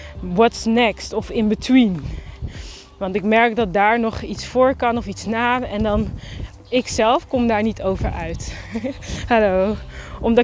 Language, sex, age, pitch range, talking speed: Dutch, female, 20-39, 210-255 Hz, 155 wpm